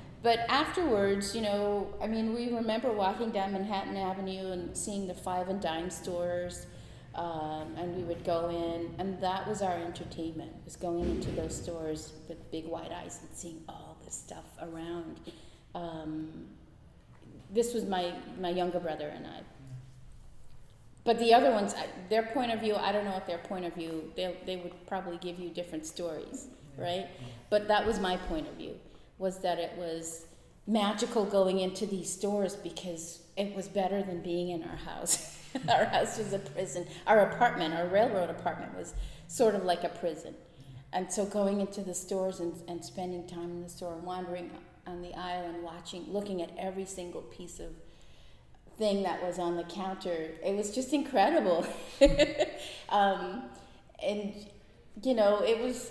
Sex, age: female, 30-49